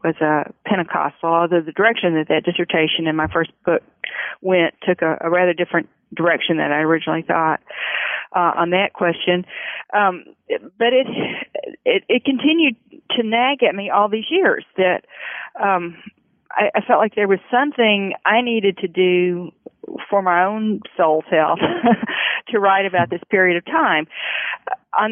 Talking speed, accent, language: 160 wpm, American, English